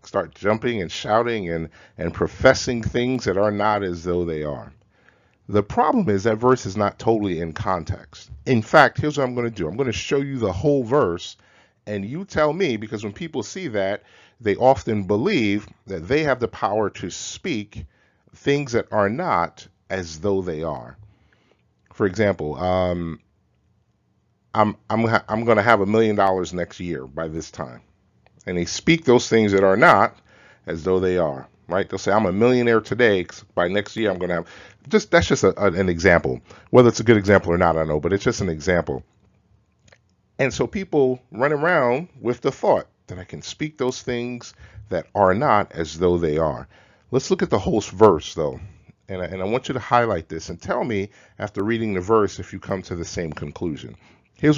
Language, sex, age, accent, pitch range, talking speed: English, male, 40-59, American, 90-120 Hz, 205 wpm